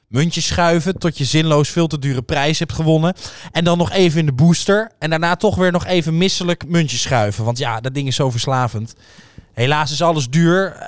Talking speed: 210 wpm